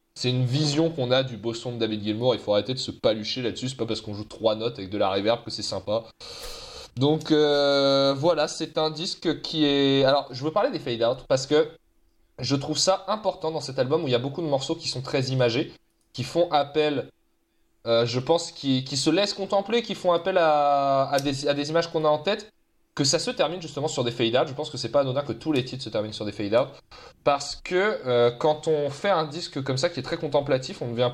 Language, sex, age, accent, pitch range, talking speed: French, male, 20-39, French, 115-155 Hz, 250 wpm